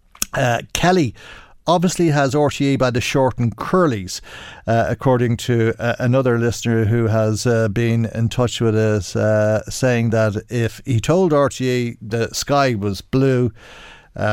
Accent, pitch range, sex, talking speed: Irish, 105-130 Hz, male, 140 wpm